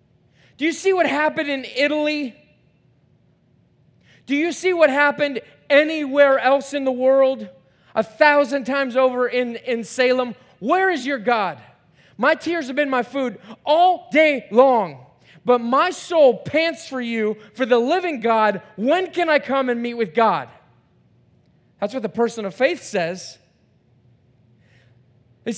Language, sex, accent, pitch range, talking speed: English, male, American, 215-285 Hz, 150 wpm